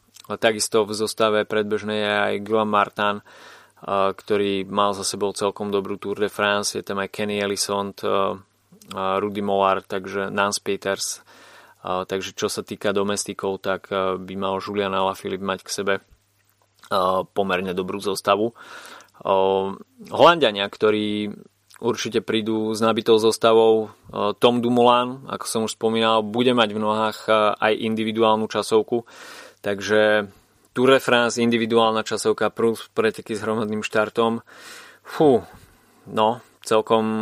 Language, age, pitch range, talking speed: Slovak, 20-39, 100-115 Hz, 125 wpm